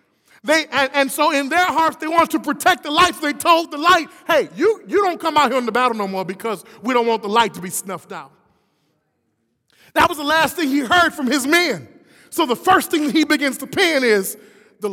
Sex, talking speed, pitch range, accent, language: male, 240 wpm, 305-370 Hz, American, English